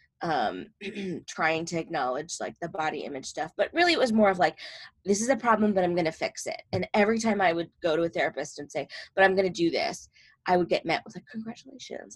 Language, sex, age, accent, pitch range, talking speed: English, female, 20-39, American, 165-210 Hz, 235 wpm